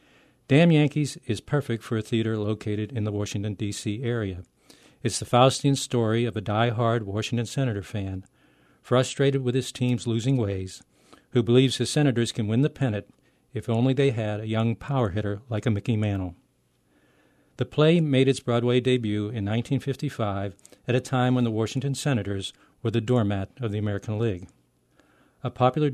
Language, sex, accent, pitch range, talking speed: English, male, American, 105-130 Hz, 170 wpm